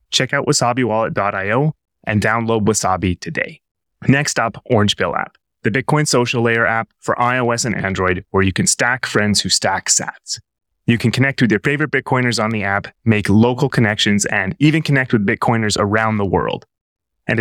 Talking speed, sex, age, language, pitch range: 170 wpm, male, 20-39, English, 105-125 Hz